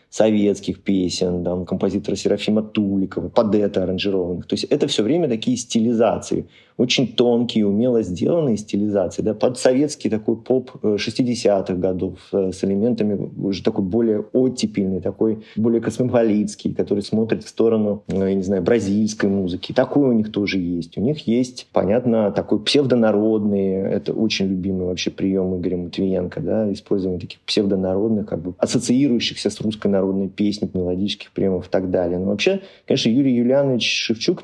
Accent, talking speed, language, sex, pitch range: native, 150 wpm, Russian, male, 95-115 Hz